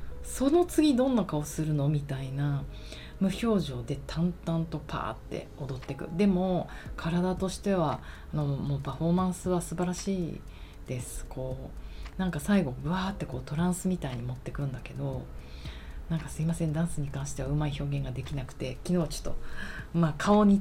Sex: female